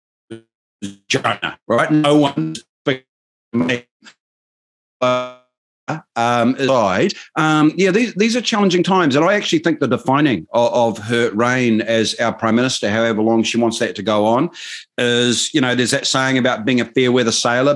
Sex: male